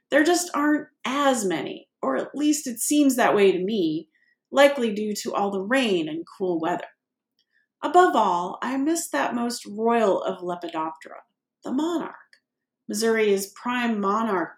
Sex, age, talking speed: female, 30-49, 150 wpm